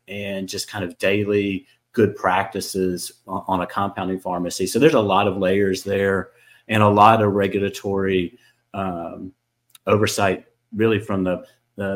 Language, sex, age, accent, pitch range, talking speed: English, male, 30-49, American, 95-110 Hz, 145 wpm